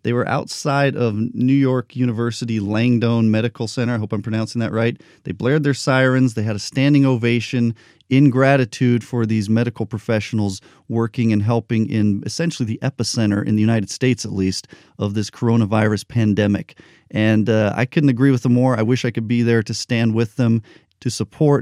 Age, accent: 40-59, American